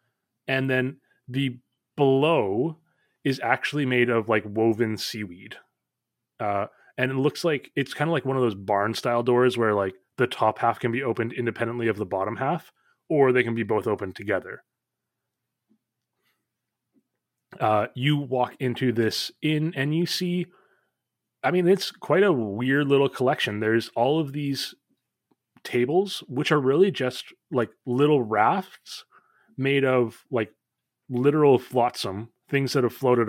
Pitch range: 115-140 Hz